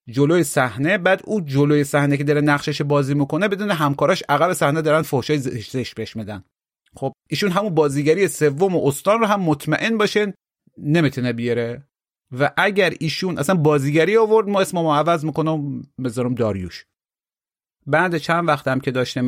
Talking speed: 155 wpm